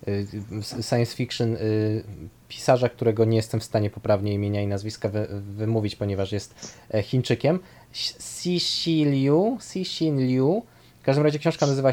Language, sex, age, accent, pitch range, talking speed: Polish, male, 20-39, native, 115-150 Hz, 155 wpm